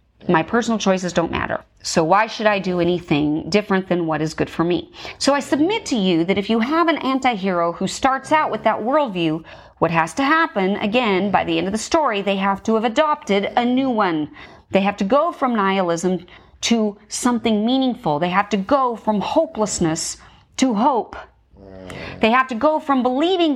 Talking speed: 195 wpm